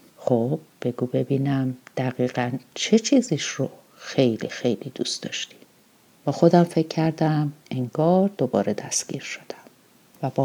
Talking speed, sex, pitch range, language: 120 wpm, female, 130-170 Hz, Persian